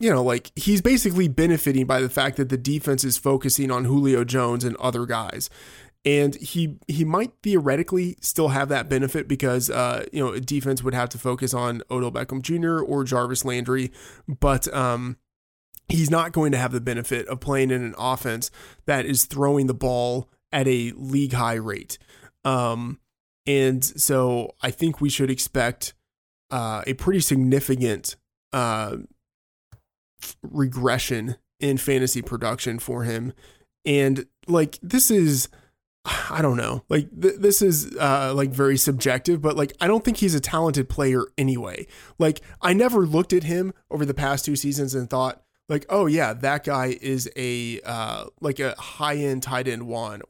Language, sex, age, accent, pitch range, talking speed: English, male, 20-39, American, 125-150 Hz, 170 wpm